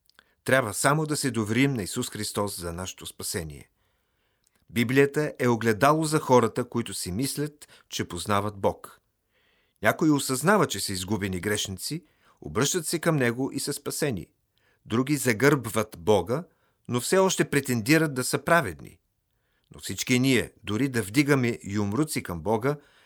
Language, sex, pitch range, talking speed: Bulgarian, male, 100-135 Hz, 140 wpm